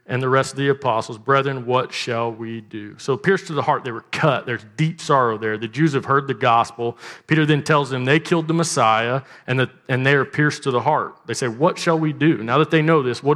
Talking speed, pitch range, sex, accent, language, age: 260 wpm, 115-150 Hz, male, American, English, 40-59